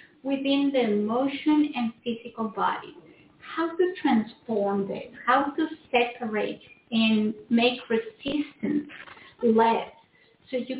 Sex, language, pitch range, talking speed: female, English, 220-275 Hz, 105 wpm